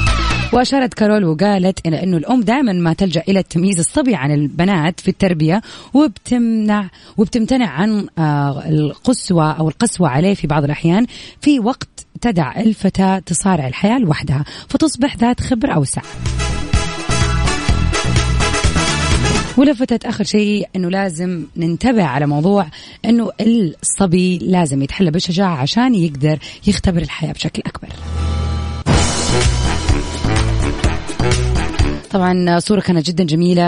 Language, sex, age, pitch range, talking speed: Arabic, female, 20-39, 145-205 Hz, 105 wpm